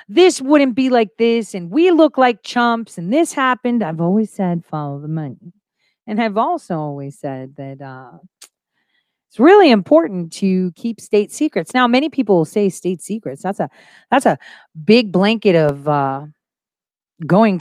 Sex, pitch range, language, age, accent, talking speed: female, 160-245 Hz, English, 40-59, American, 165 wpm